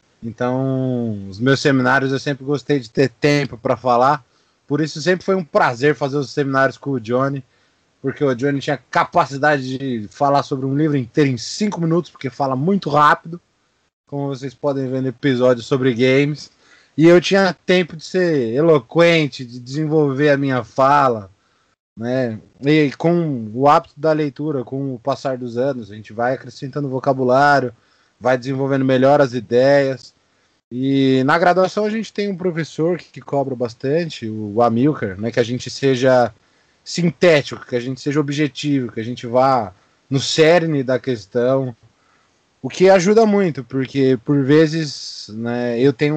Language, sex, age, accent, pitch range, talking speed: Portuguese, male, 20-39, Brazilian, 125-150 Hz, 165 wpm